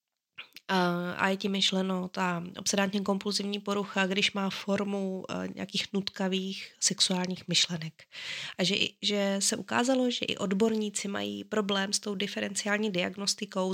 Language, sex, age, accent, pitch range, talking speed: Czech, female, 20-39, native, 185-210 Hz, 125 wpm